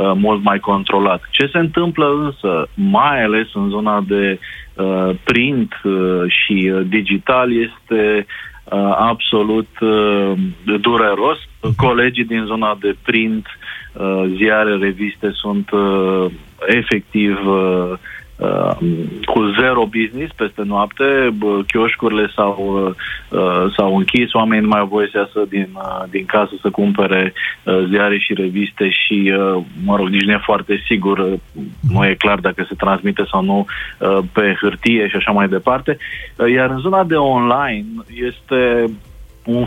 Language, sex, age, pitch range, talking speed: Romanian, male, 30-49, 100-120 Hz, 135 wpm